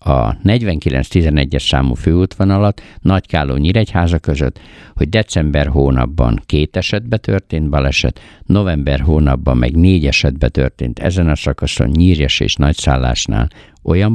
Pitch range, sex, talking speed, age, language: 70-95 Hz, male, 125 wpm, 60-79, Hungarian